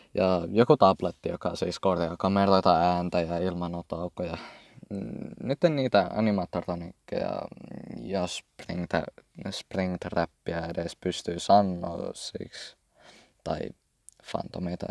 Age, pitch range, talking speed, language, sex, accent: 20-39, 85-95 Hz, 85 wpm, Finnish, male, native